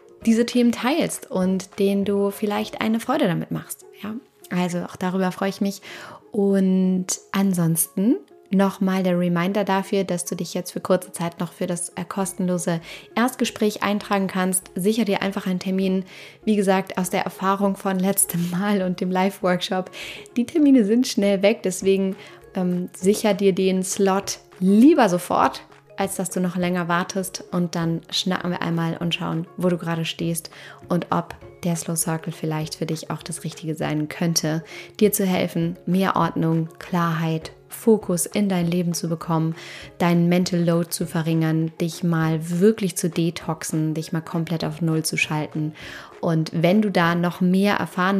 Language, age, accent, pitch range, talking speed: German, 20-39, German, 170-200 Hz, 165 wpm